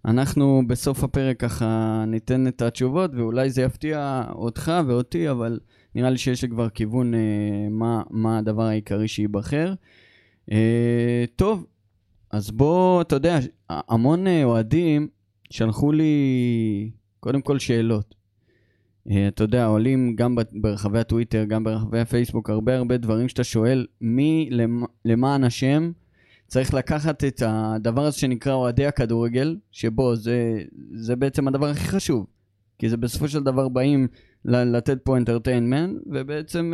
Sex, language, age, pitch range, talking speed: male, Hebrew, 20-39, 110-145 Hz, 135 wpm